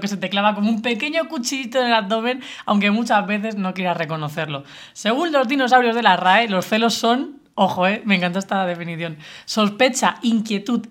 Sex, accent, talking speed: female, Spanish, 185 wpm